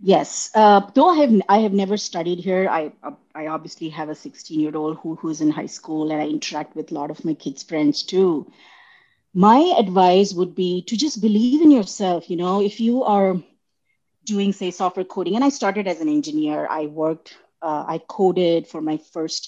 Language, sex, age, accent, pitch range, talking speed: English, female, 30-49, Indian, 165-210 Hz, 205 wpm